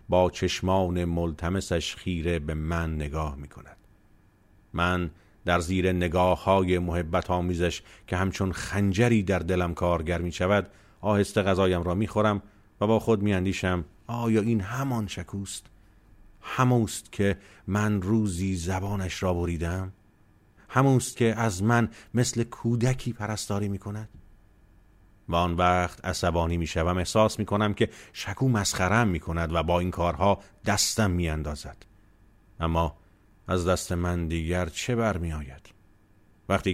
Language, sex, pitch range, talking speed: Persian, male, 85-105 Hz, 130 wpm